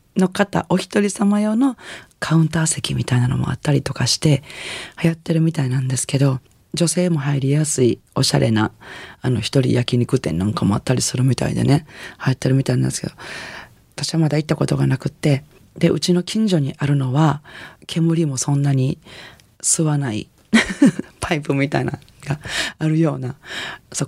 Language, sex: Japanese, female